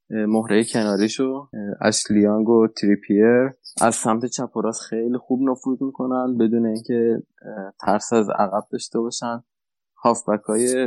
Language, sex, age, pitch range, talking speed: Persian, male, 20-39, 105-120 Hz, 110 wpm